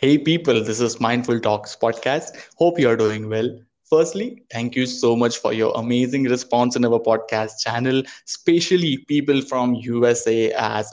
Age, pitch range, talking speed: 20-39, 115-130 Hz, 165 wpm